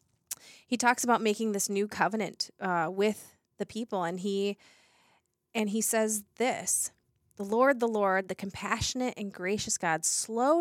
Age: 30-49